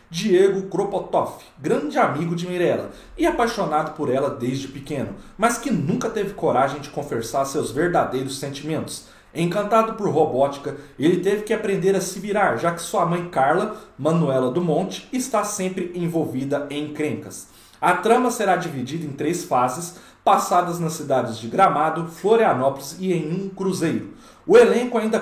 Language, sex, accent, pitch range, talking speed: Portuguese, male, Brazilian, 145-205 Hz, 155 wpm